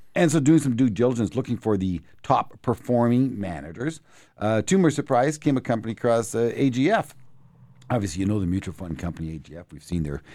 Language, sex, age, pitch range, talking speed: English, male, 50-69, 100-130 Hz, 185 wpm